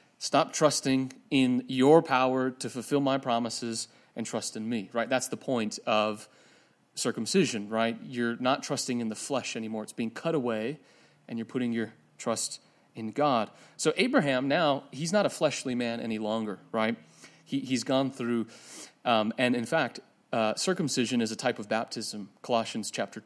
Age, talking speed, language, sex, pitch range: 30-49, 170 wpm, English, male, 120-155 Hz